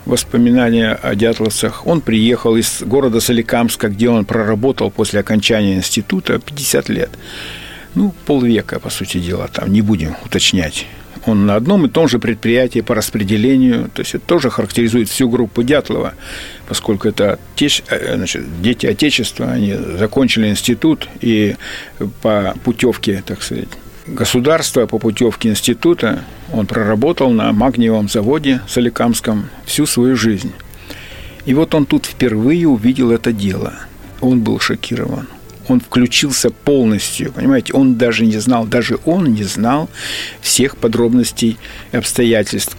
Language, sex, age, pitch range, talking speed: Russian, male, 50-69, 110-130 Hz, 130 wpm